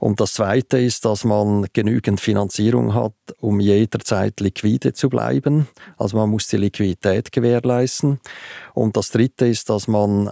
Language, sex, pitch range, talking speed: German, male, 100-120 Hz, 150 wpm